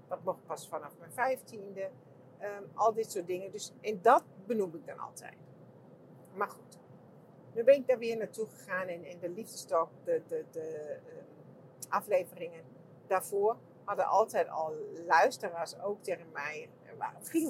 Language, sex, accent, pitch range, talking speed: English, female, Dutch, 170-240 Hz, 155 wpm